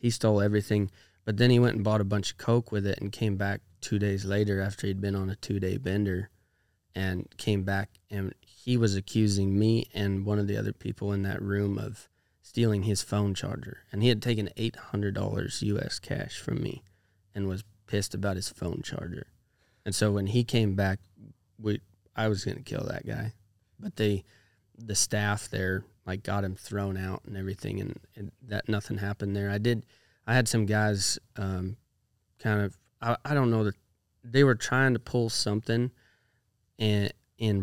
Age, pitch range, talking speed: 20-39, 100-110 Hz, 190 wpm